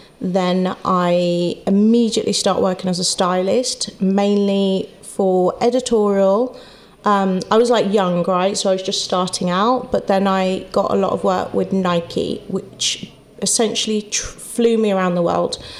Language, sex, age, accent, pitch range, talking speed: English, female, 30-49, British, 190-225 Hz, 150 wpm